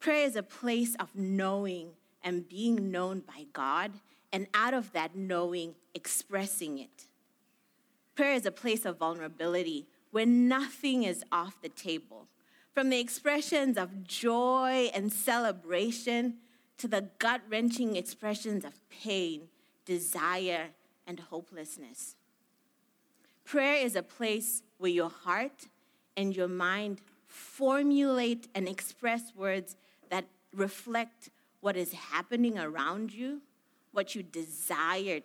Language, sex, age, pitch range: English, female, 30-49, 190-260 Hz